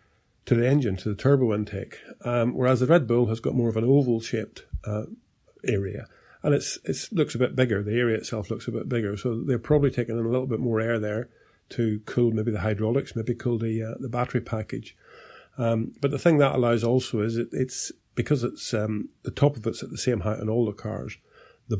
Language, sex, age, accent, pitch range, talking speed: English, male, 50-69, British, 110-125 Hz, 230 wpm